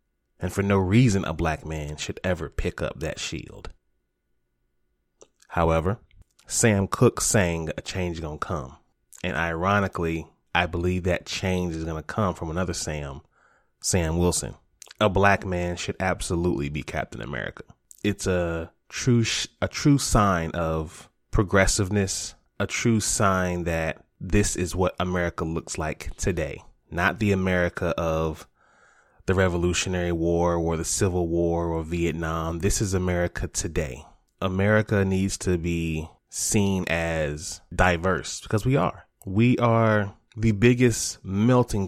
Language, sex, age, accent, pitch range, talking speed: English, male, 30-49, American, 80-100 Hz, 140 wpm